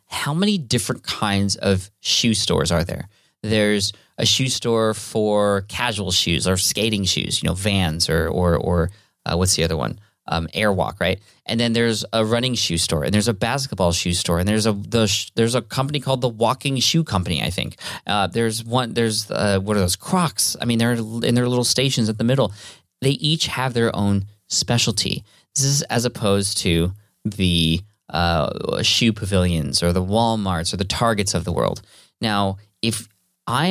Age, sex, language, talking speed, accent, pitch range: 20-39, male, English, 190 wpm, American, 95-120 Hz